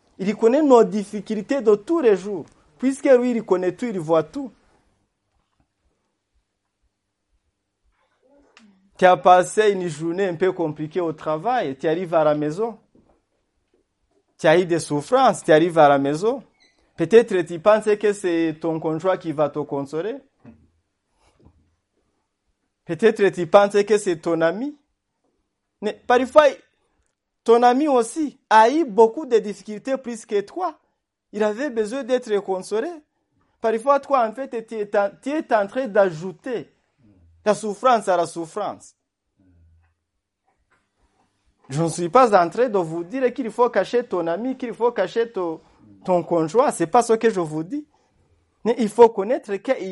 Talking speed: 155 wpm